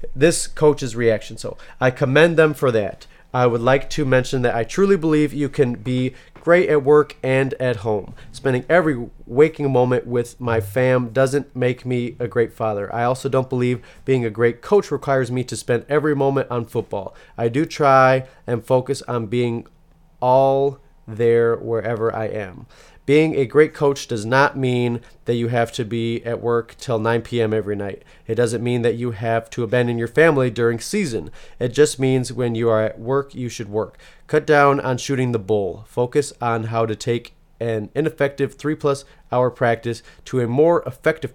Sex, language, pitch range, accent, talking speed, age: male, English, 115-140 Hz, American, 185 wpm, 30-49